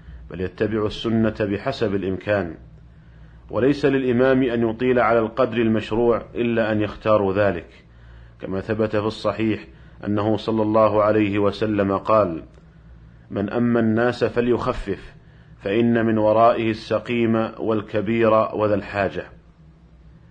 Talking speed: 110 wpm